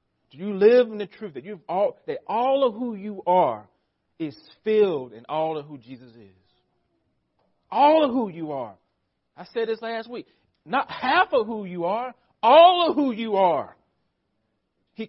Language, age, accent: English, 40-59, American